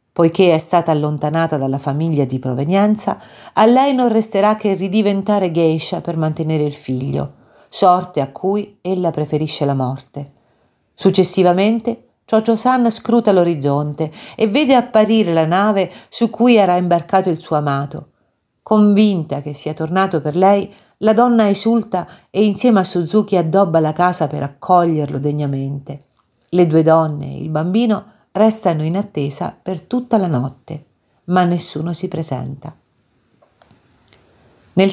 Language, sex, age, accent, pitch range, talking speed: Italian, female, 50-69, native, 150-205 Hz, 135 wpm